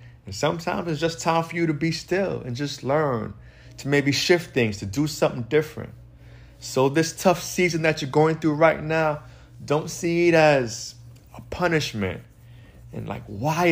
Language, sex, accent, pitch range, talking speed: English, male, American, 110-150 Hz, 175 wpm